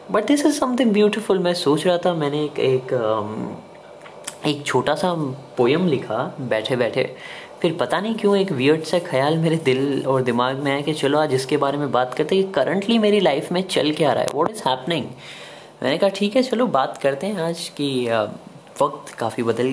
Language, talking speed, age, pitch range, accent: Hindi, 205 wpm, 20-39, 120-160 Hz, native